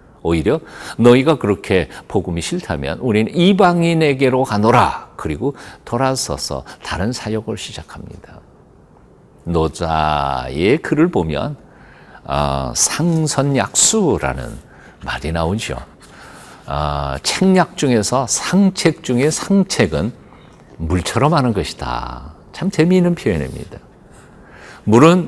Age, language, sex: 50-69, Korean, male